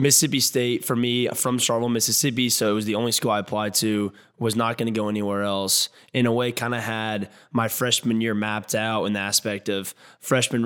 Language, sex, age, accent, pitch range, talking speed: English, male, 20-39, American, 105-120 Hz, 220 wpm